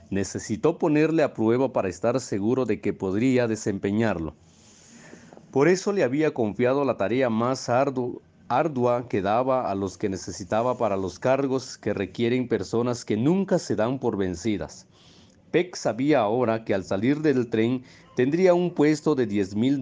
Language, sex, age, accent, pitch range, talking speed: Spanish, male, 40-59, Mexican, 100-130 Hz, 155 wpm